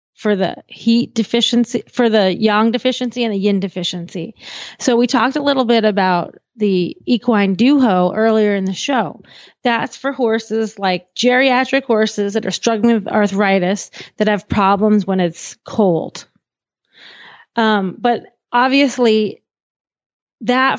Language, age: English, 30-49